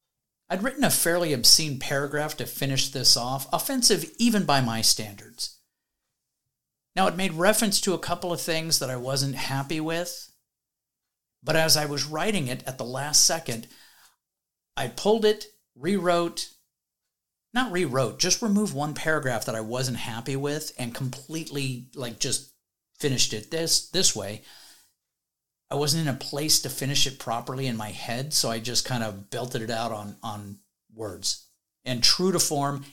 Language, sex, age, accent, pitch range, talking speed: English, male, 50-69, American, 120-160 Hz, 165 wpm